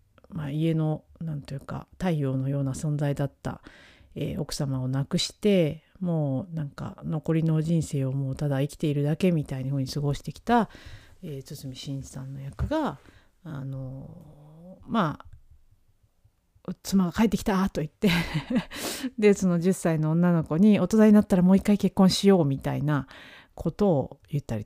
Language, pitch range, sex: Japanese, 140-210 Hz, female